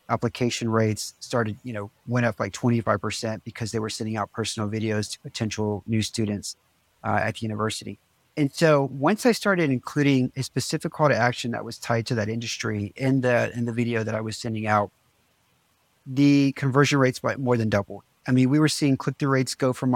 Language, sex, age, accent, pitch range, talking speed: English, male, 40-59, American, 115-135 Hz, 200 wpm